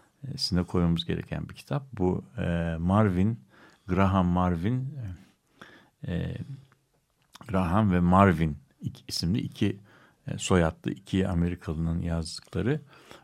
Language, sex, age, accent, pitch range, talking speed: Turkish, male, 60-79, native, 85-115 Hz, 95 wpm